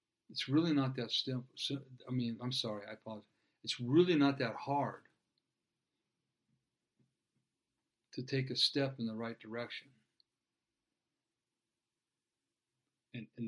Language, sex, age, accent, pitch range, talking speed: English, male, 50-69, American, 115-135 Hz, 110 wpm